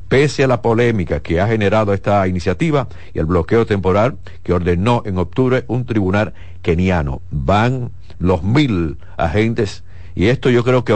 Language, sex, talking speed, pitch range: Spanish, male, 160 wpm, 90-125 Hz